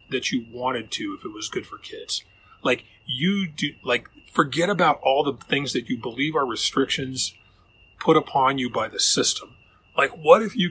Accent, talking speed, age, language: American, 190 wpm, 30-49, English